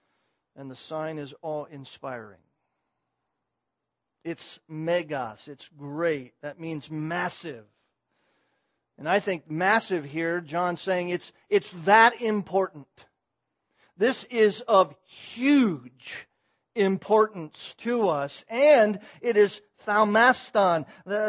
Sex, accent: male, American